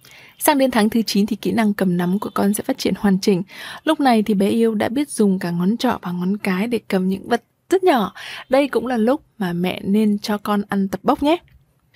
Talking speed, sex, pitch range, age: 250 wpm, female, 195-245 Hz, 20-39